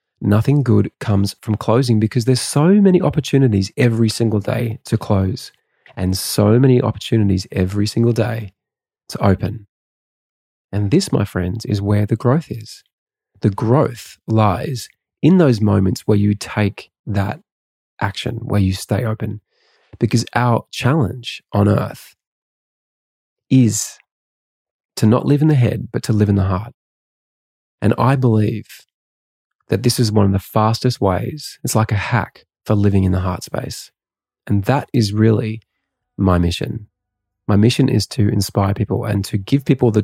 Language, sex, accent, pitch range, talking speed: English, male, Australian, 100-120 Hz, 155 wpm